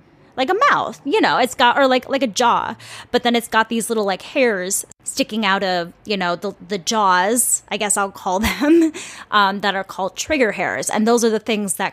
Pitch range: 180-245 Hz